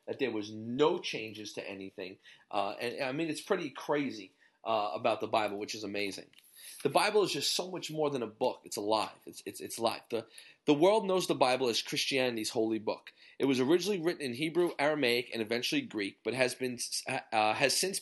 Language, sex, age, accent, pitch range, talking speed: English, male, 30-49, American, 120-165 Hz, 215 wpm